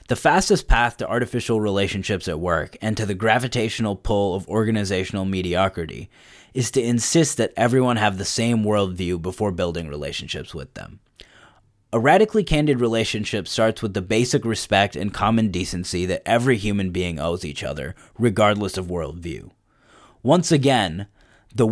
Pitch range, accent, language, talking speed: 95-120 Hz, American, English, 150 wpm